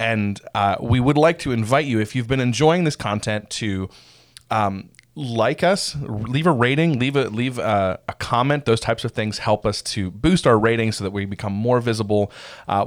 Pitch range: 100-130 Hz